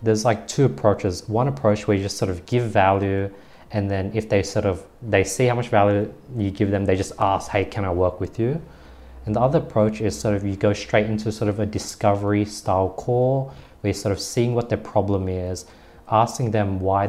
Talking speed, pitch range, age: 230 wpm, 100-120 Hz, 20-39